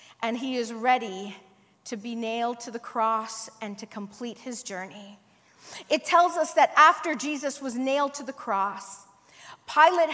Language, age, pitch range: English, 40-59, 250-350 Hz